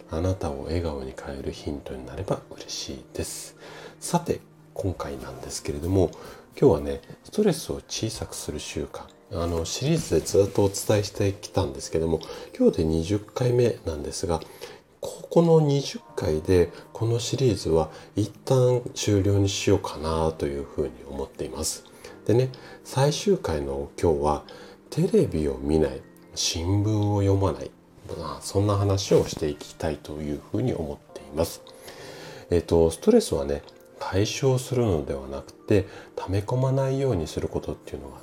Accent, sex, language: native, male, Japanese